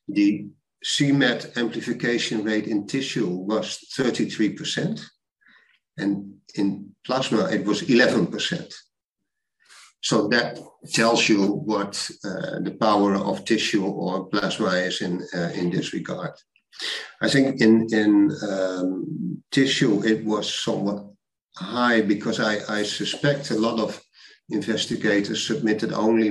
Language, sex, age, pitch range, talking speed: English, male, 50-69, 100-115 Hz, 120 wpm